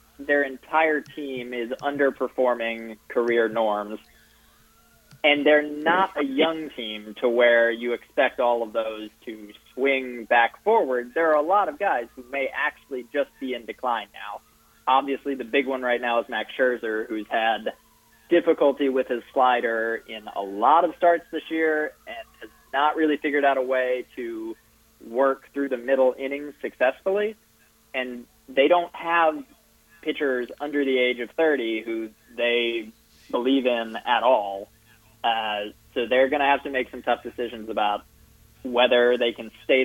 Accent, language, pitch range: American, English, 115-145 Hz